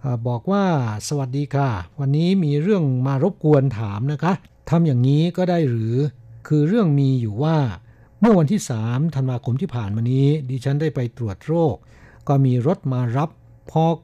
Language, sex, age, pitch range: Thai, male, 60-79, 120-160 Hz